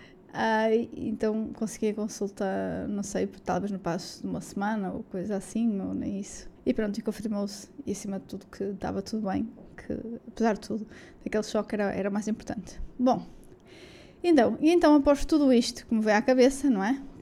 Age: 20-39